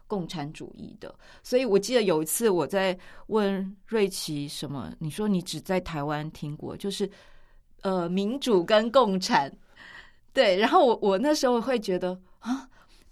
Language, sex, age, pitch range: Chinese, female, 20-39, 160-210 Hz